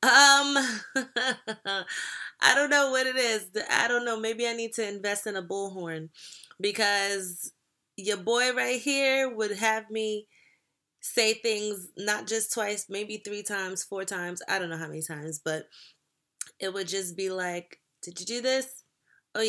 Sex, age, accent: female, 20-39, American